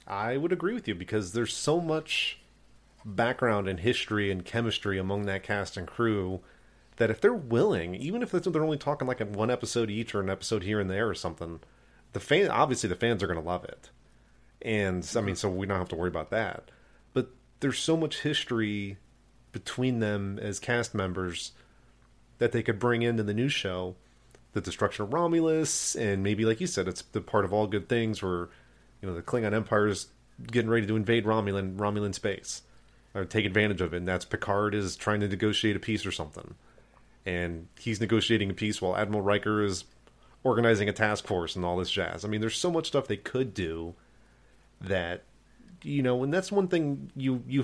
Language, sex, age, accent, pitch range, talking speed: English, male, 30-49, American, 100-125 Hz, 205 wpm